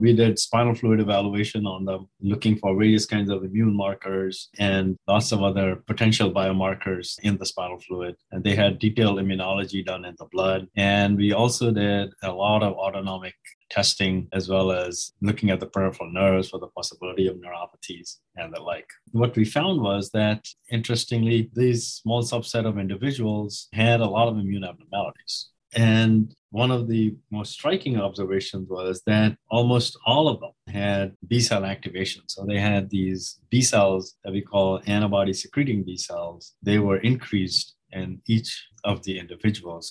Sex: male